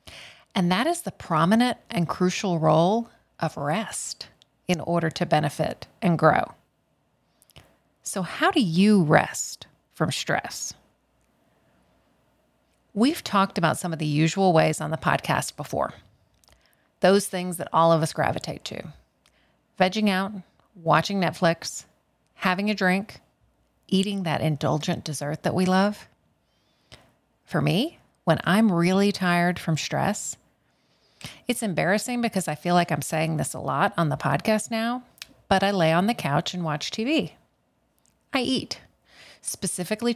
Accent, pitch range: American, 155-205 Hz